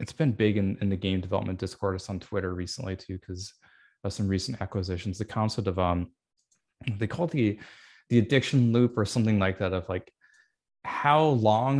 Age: 20-39